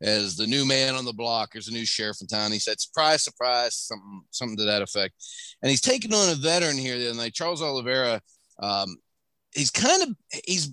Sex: male